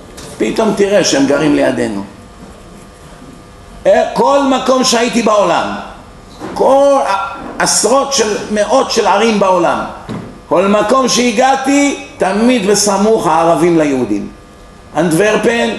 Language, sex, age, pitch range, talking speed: Hebrew, male, 50-69, 180-235 Hz, 90 wpm